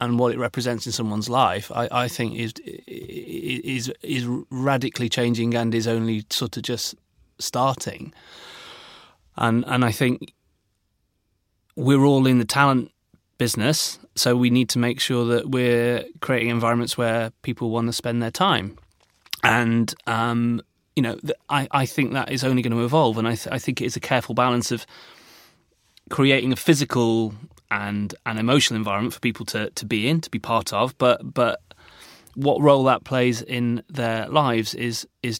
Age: 30-49